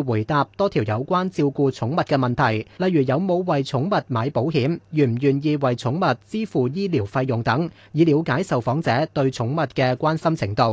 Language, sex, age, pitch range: Chinese, male, 30-49, 125-175 Hz